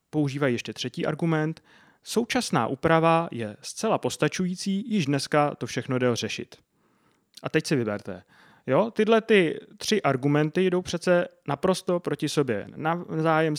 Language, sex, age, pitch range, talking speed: Czech, male, 30-49, 125-160 Hz, 135 wpm